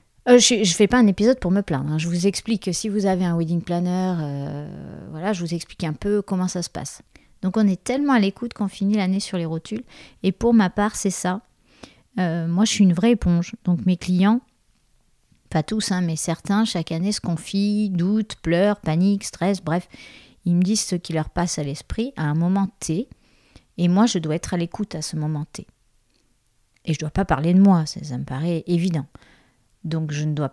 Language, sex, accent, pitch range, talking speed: French, female, French, 160-205 Hz, 225 wpm